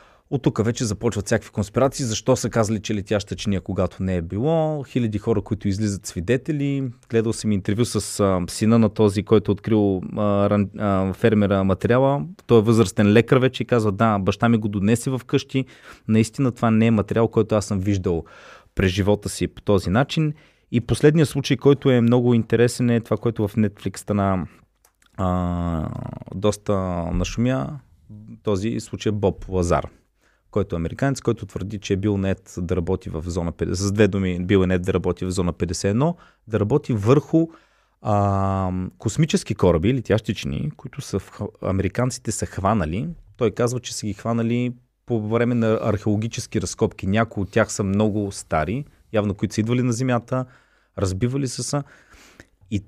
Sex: male